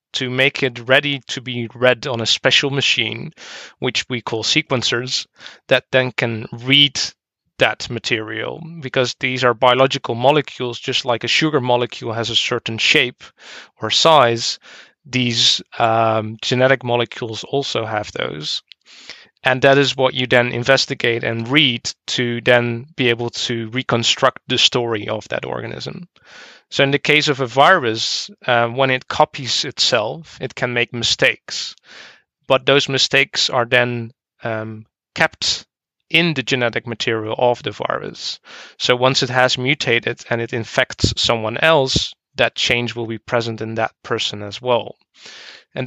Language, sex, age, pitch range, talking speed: English, male, 20-39, 115-135 Hz, 150 wpm